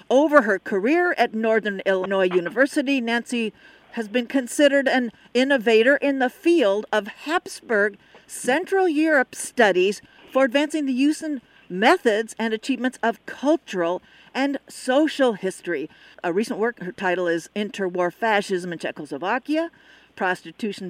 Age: 50-69